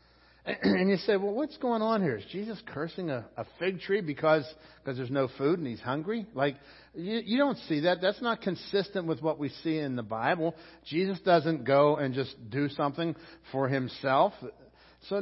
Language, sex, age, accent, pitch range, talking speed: English, male, 60-79, American, 140-190 Hz, 195 wpm